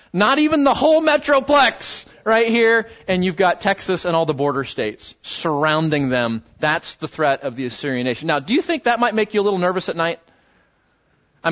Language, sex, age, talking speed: English, male, 30-49, 205 wpm